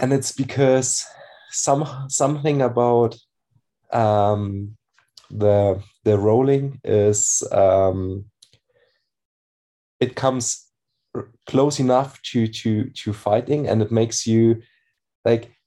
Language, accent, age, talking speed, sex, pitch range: English, German, 20-39, 100 wpm, male, 110-130 Hz